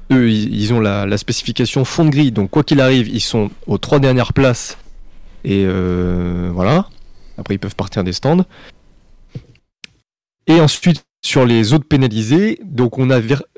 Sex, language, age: male, French, 30-49